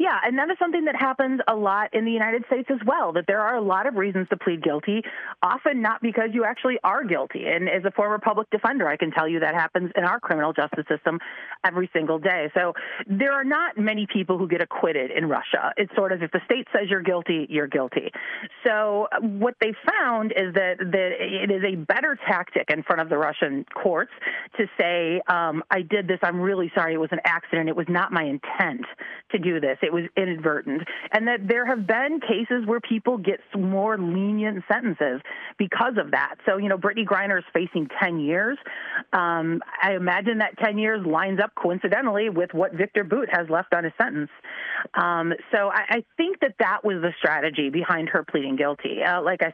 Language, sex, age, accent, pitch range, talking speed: English, female, 30-49, American, 170-220 Hz, 210 wpm